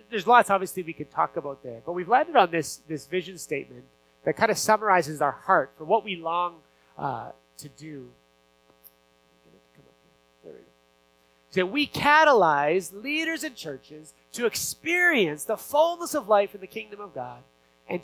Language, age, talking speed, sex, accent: English, 30-49, 185 wpm, male, American